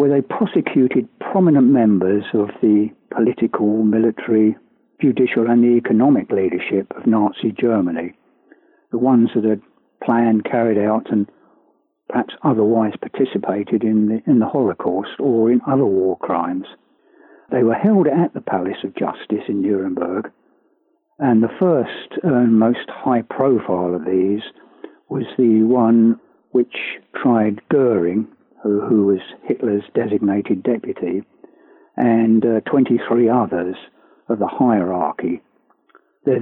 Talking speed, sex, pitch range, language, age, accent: 125 wpm, male, 105-120 Hz, English, 60-79, British